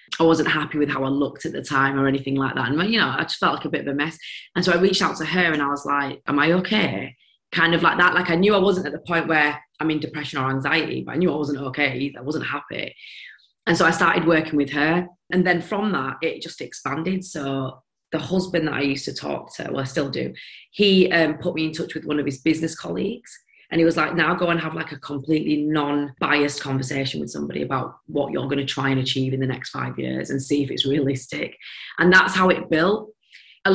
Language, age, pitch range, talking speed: English, 20-39, 145-170 Hz, 260 wpm